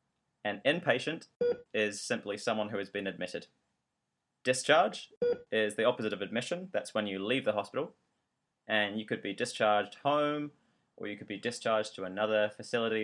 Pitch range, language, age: 105-130 Hz, English, 20-39